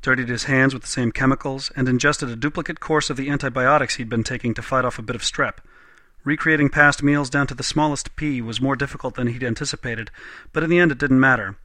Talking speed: 235 wpm